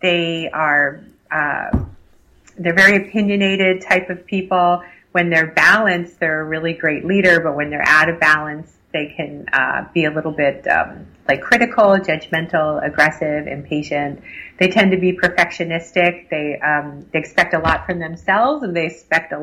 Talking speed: 165 wpm